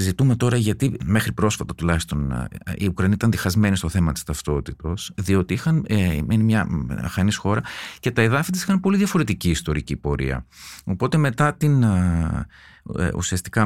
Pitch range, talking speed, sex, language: 85-120 Hz, 140 wpm, male, Greek